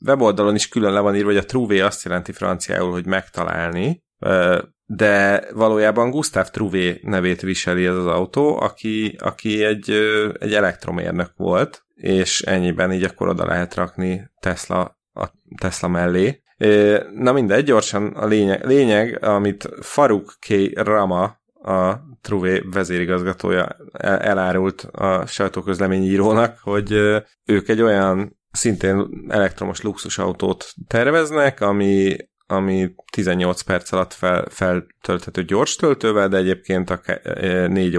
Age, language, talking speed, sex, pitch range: 30-49, Hungarian, 125 wpm, male, 90-105 Hz